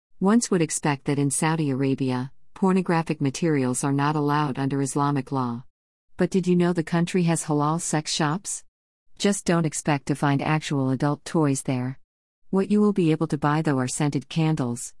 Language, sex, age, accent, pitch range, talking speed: English, female, 50-69, American, 135-170 Hz, 180 wpm